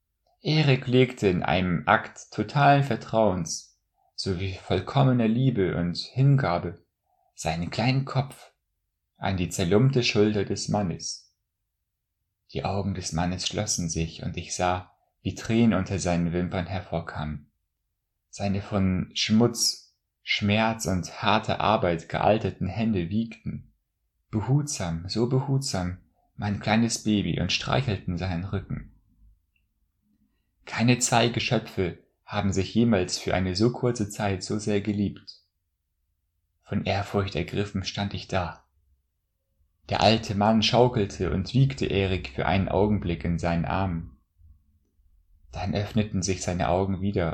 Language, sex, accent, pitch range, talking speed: German, male, German, 85-105 Hz, 120 wpm